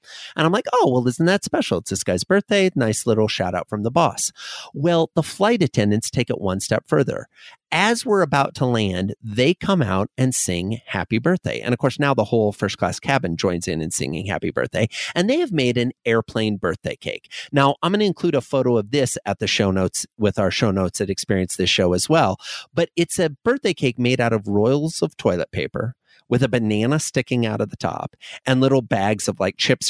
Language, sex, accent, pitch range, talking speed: English, male, American, 105-160 Hz, 225 wpm